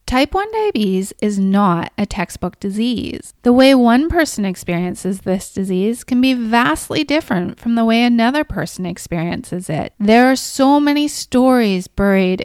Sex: female